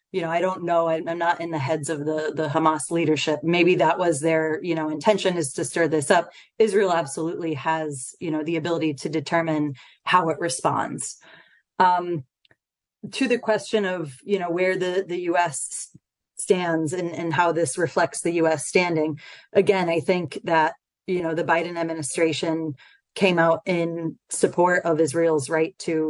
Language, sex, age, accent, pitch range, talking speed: English, female, 30-49, American, 160-180 Hz, 175 wpm